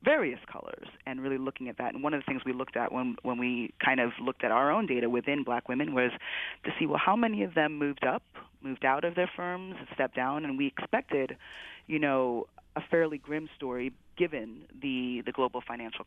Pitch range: 125-155 Hz